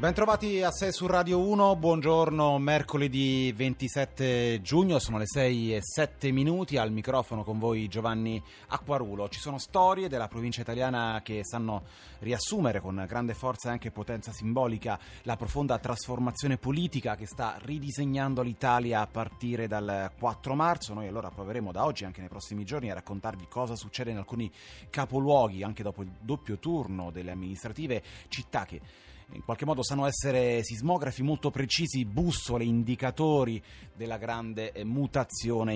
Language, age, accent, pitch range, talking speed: Italian, 30-49, native, 105-135 Hz, 150 wpm